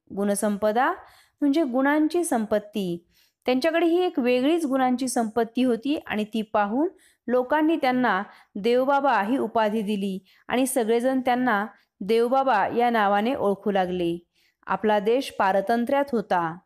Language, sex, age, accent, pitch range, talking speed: Marathi, female, 20-39, native, 210-285 Hz, 115 wpm